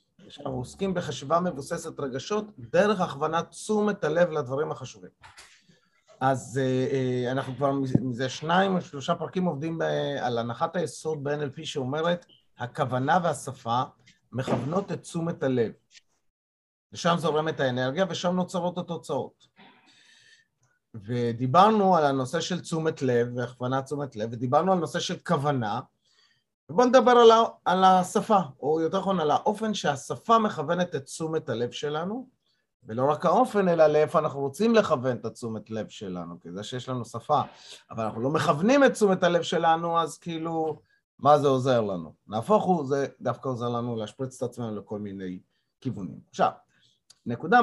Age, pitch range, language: 30-49, 130-175 Hz, Hebrew